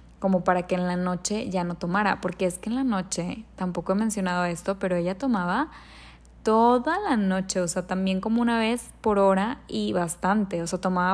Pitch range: 175-195 Hz